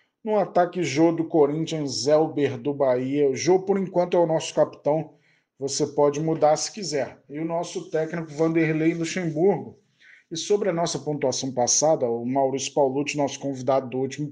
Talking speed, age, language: 170 wpm, 20-39, Portuguese